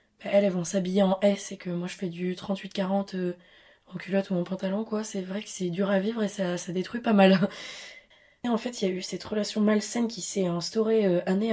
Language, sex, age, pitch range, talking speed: French, female, 20-39, 185-220 Hz, 250 wpm